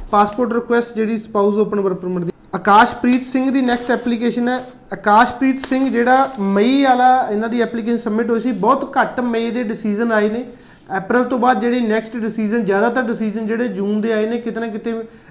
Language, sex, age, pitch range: Punjabi, male, 20-39, 215-245 Hz